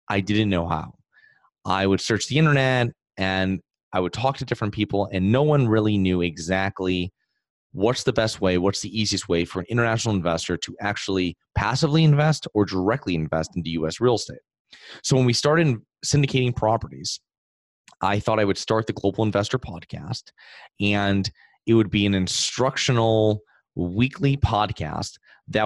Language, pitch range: English, 95-125 Hz